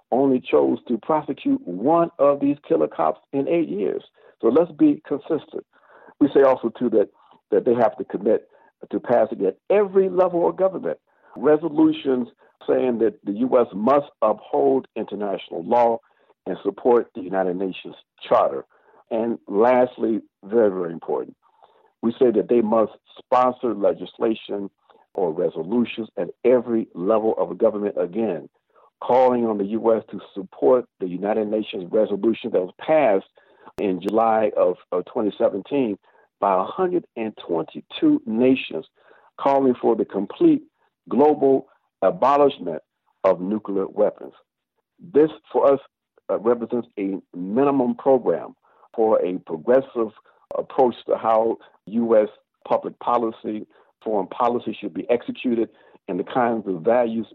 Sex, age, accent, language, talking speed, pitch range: male, 60-79, American, English, 130 wpm, 115-170 Hz